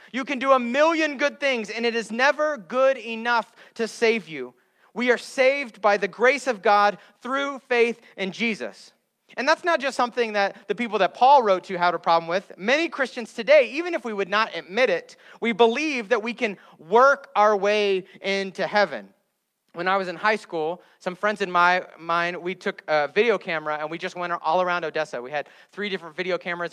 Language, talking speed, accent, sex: English, 210 wpm, American, male